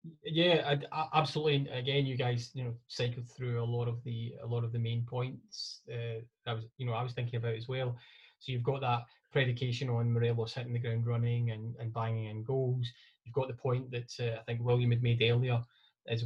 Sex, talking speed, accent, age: male, 220 wpm, British, 20-39